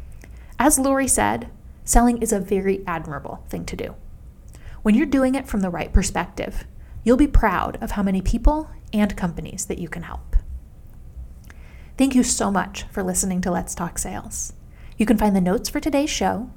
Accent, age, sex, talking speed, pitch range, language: American, 30-49, female, 180 wpm, 190-250 Hz, English